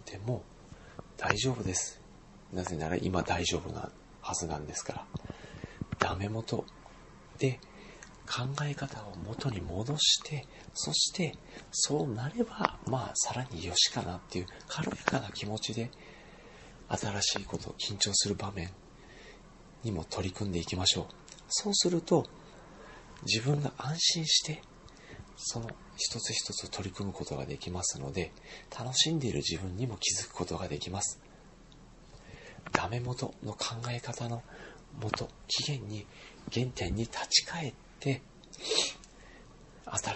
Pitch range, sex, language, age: 90-125 Hz, male, Japanese, 40-59